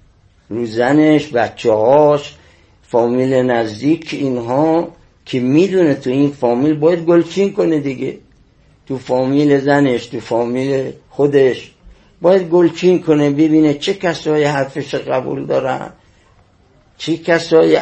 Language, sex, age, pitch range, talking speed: Persian, male, 60-79, 125-160 Hz, 110 wpm